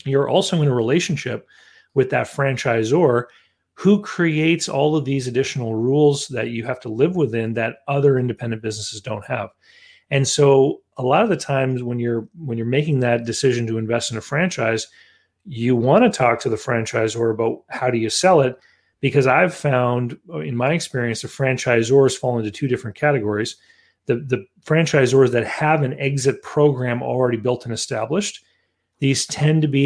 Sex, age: male, 40-59